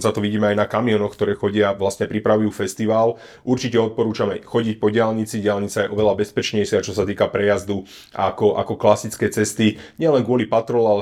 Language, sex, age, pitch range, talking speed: Slovak, male, 30-49, 100-110 Hz, 180 wpm